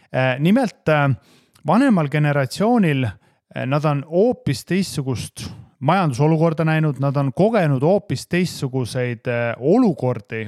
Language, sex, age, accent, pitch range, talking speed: English, male, 30-49, Finnish, 125-165 Hz, 85 wpm